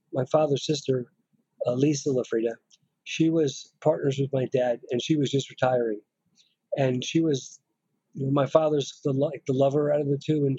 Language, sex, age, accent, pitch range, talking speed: English, male, 50-69, American, 130-150 Hz, 170 wpm